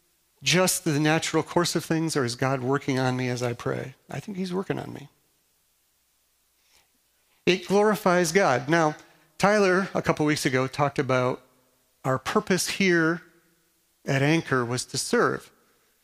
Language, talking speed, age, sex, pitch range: English, 150 wpm, 40-59, male, 135-165 Hz